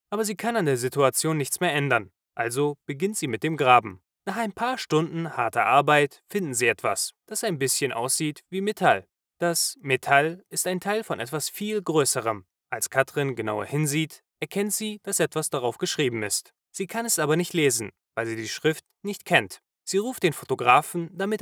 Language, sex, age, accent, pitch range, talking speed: German, male, 20-39, German, 135-195 Hz, 190 wpm